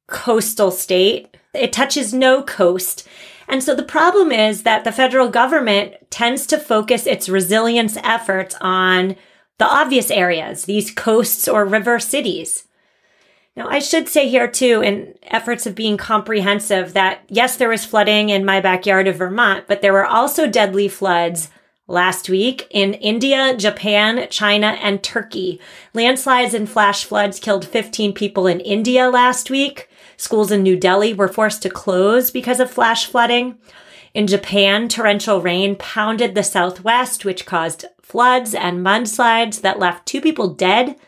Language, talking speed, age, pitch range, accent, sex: English, 155 wpm, 30-49, 195-245 Hz, American, female